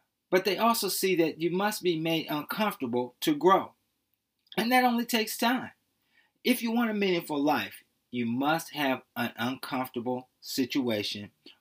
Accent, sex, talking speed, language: American, male, 150 wpm, English